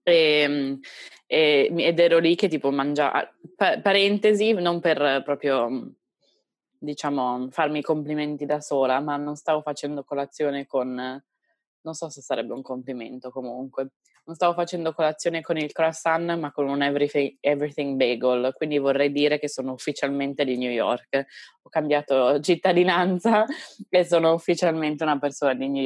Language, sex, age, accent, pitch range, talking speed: Italian, female, 20-39, native, 145-195 Hz, 145 wpm